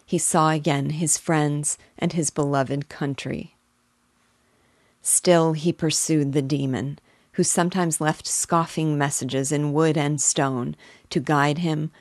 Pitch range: 140-165 Hz